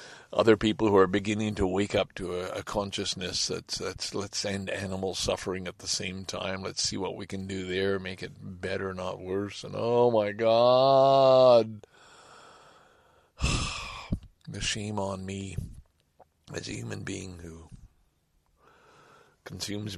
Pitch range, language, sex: 90-115 Hz, English, male